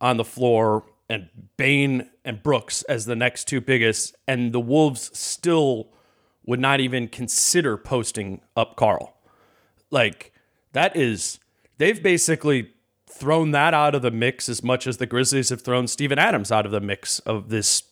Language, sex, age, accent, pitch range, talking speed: English, male, 40-59, American, 120-160 Hz, 165 wpm